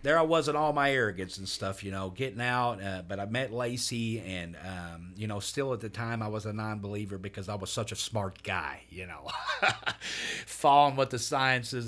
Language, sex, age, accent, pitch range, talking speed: English, male, 40-59, American, 95-120 Hz, 215 wpm